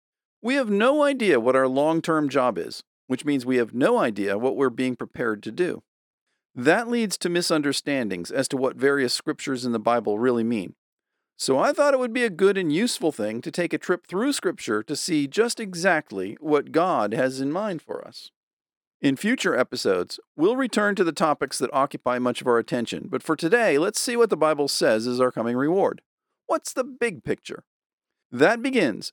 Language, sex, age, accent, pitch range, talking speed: English, male, 50-69, American, 130-205 Hz, 200 wpm